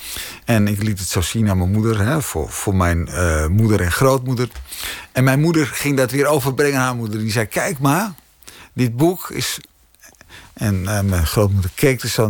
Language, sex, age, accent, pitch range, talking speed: Dutch, male, 50-69, Dutch, 100-135 Hz, 195 wpm